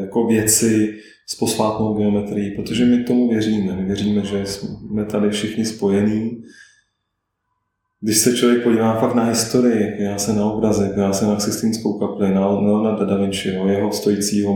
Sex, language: male, Czech